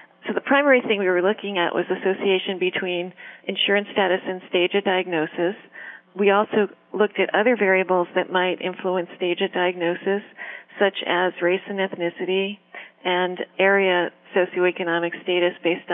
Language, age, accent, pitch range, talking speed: English, 40-59, American, 175-195 Hz, 145 wpm